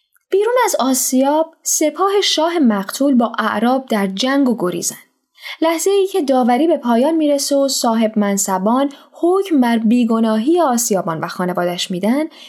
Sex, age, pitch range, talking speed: female, 10-29, 210-300 Hz, 140 wpm